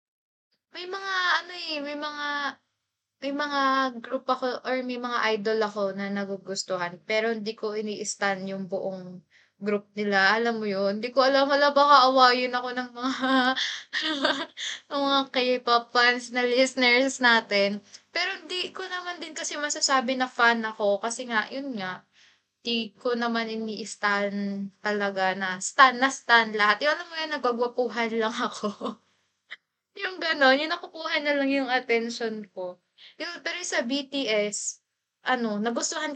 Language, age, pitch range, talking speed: Filipino, 20-39, 215-295 Hz, 150 wpm